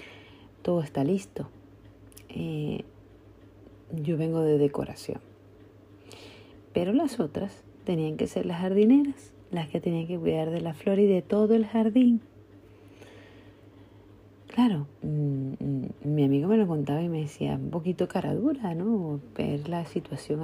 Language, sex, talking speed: Spanish, female, 140 wpm